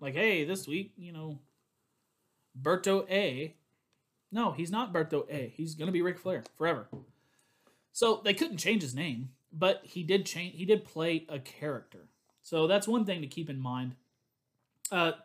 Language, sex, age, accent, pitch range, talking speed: English, male, 30-49, American, 145-180 Hz, 175 wpm